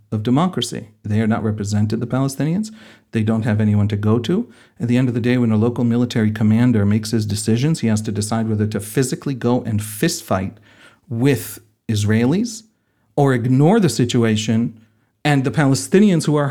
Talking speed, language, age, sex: 185 wpm, English, 40-59, male